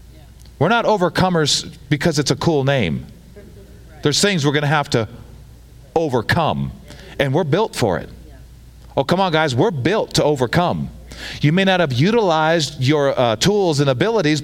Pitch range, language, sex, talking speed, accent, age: 120-185 Hz, English, male, 160 wpm, American, 40-59